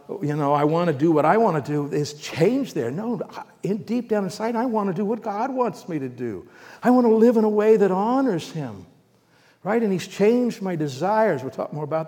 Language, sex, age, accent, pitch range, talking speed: English, male, 60-79, American, 125-185 Hz, 245 wpm